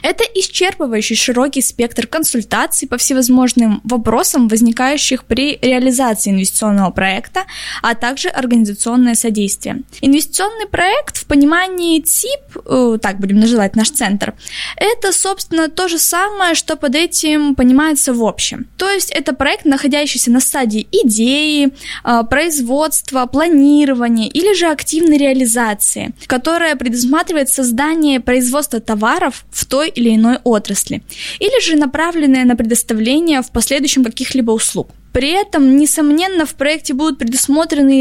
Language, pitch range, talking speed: Russian, 240-305 Hz, 125 wpm